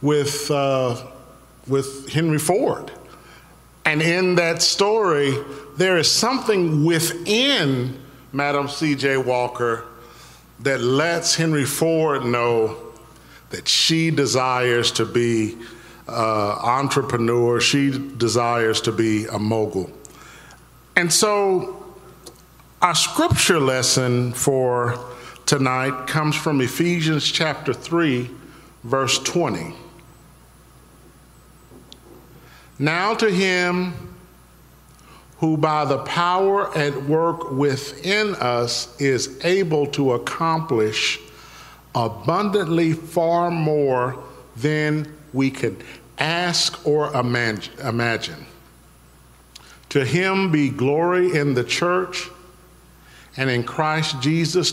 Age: 50-69